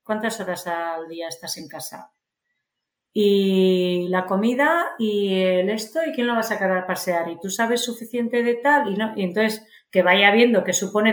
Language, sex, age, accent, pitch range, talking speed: Spanish, female, 40-59, Spanish, 180-240 Hz, 195 wpm